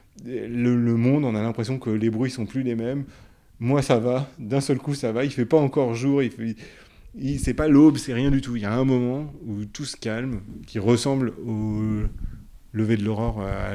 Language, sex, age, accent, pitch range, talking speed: French, male, 30-49, French, 110-125 Hz, 225 wpm